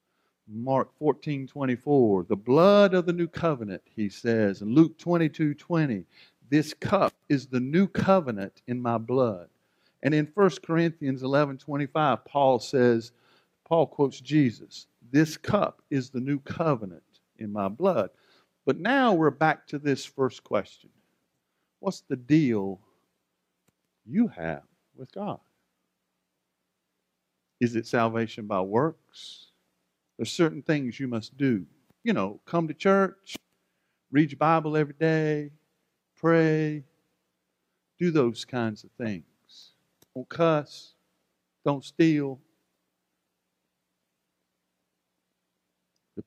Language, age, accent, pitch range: English, 50-69, American, 105-155 Hz